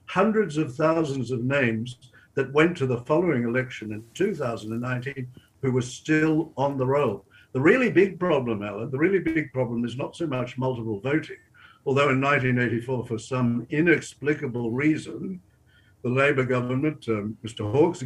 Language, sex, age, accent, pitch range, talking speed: English, male, 60-79, British, 120-150 Hz, 155 wpm